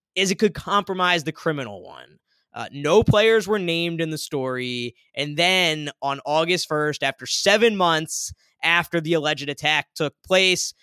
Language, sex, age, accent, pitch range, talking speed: English, male, 20-39, American, 145-190 Hz, 160 wpm